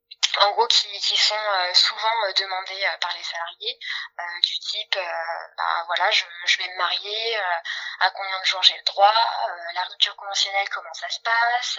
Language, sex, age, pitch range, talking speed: French, female, 10-29, 185-230 Hz, 195 wpm